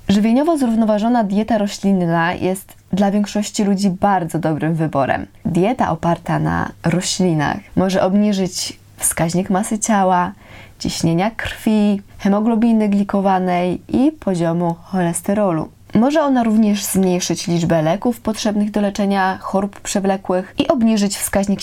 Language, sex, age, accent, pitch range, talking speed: Polish, female, 20-39, native, 170-210 Hz, 115 wpm